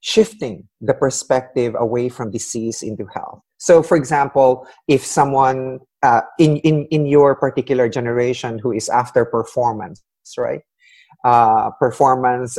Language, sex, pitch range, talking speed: English, male, 120-155 Hz, 130 wpm